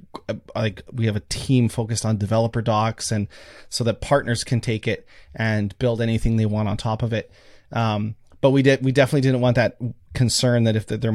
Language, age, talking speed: English, 30-49, 205 wpm